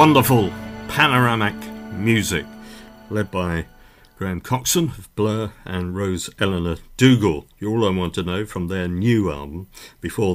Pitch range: 85-110 Hz